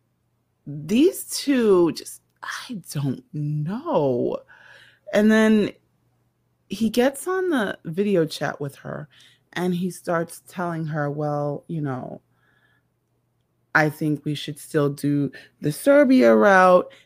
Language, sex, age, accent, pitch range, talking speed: English, female, 30-49, American, 145-185 Hz, 115 wpm